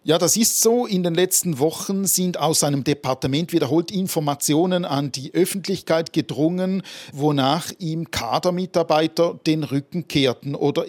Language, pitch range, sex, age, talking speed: German, 140-190 Hz, male, 40-59, 140 wpm